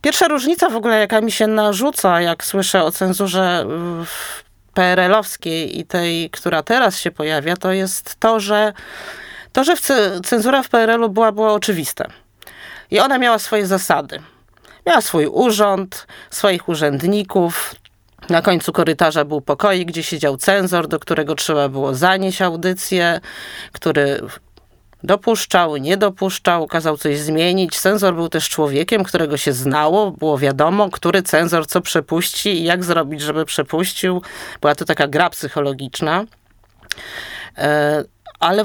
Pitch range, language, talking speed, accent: 155-210 Hz, Polish, 135 wpm, native